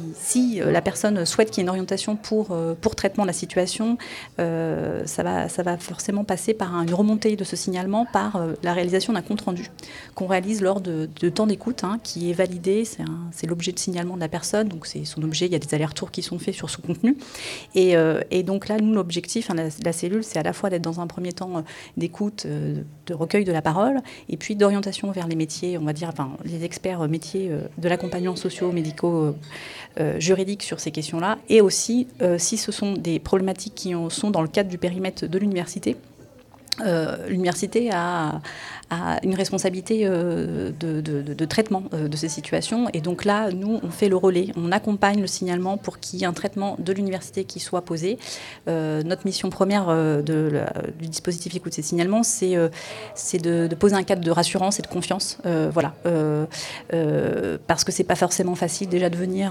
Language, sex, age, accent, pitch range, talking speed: French, female, 30-49, French, 165-200 Hz, 215 wpm